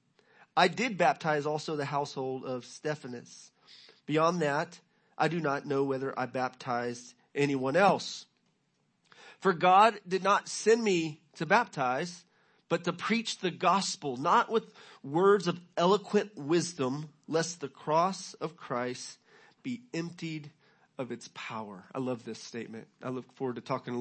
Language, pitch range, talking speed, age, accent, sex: English, 145-205 Hz, 145 wpm, 40-59, American, male